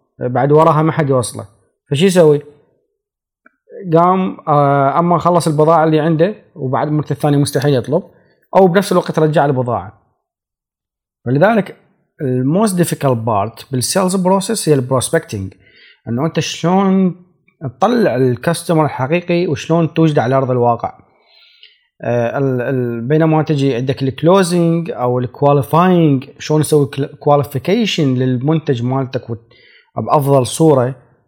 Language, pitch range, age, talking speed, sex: Arabic, 125-175 Hz, 30-49, 105 wpm, male